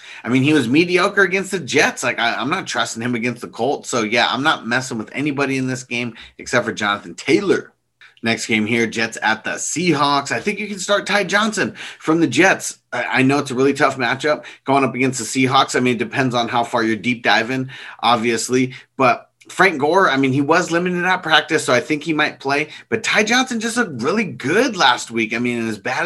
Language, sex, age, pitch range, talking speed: English, male, 30-49, 120-150 Hz, 230 wpm